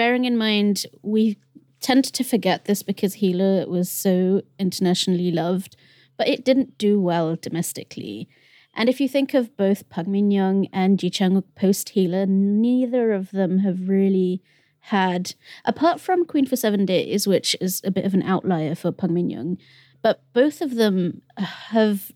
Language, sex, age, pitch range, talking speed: English, female, 30-49, 185-220 Hz, 165 wpm